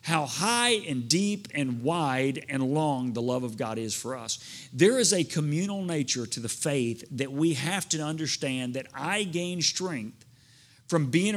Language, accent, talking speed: English, American, 180 wpm